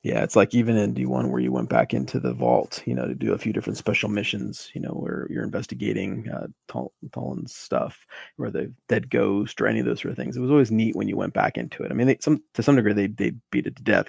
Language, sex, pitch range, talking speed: English, male, 100-110 Hz, 275 wpm